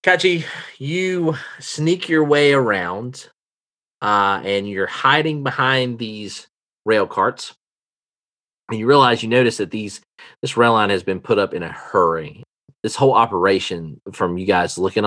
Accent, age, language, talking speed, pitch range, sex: American, 30-49, English, 150 wpm, 95-130 Hz, male